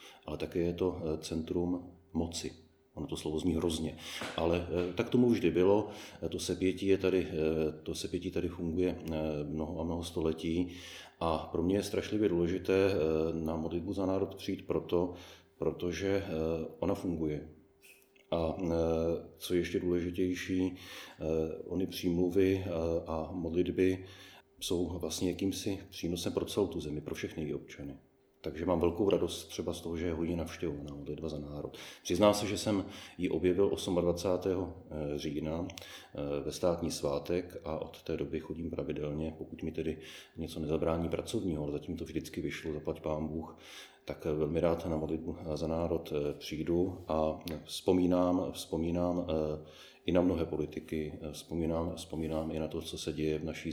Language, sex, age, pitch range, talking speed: Czech, male, 40-59, 80-90 Hz, 150 wpm